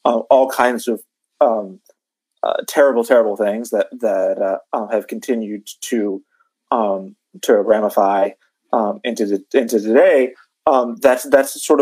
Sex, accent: male, American